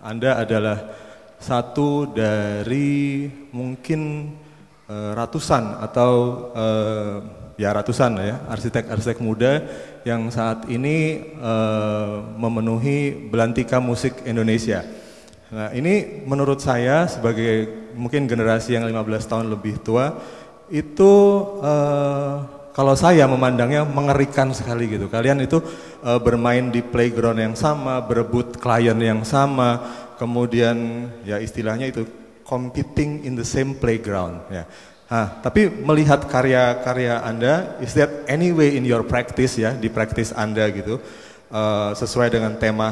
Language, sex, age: Indonesian, male, 30-49